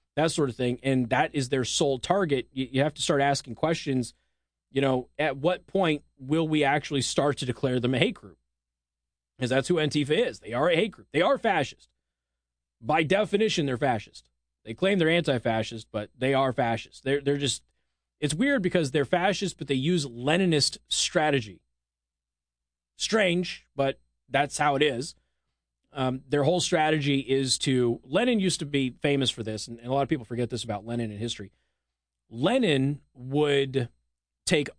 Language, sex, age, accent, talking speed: English, male, 30-49, American, 180 wpm